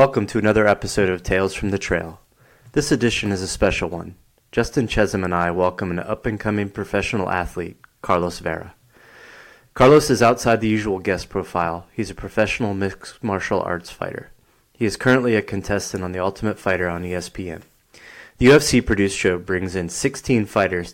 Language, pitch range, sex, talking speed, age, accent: English, 90-110 Hz, male, 170 wpm, 30-49, American